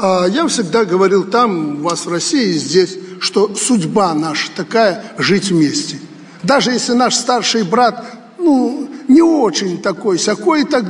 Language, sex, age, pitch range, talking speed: Russian, male, 60-79, 175-240 Hz, 160 wpm